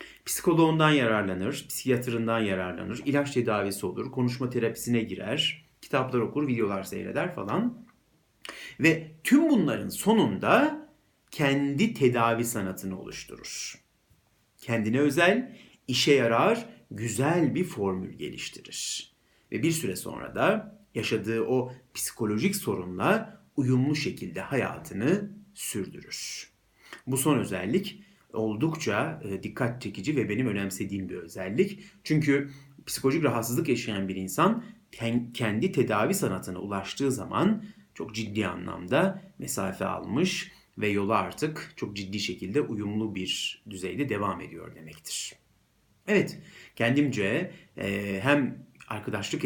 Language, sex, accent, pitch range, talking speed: Turkish, male, native, 100-160 Hz, 105 wpm